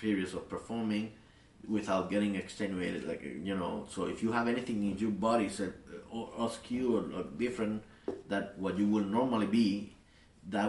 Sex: male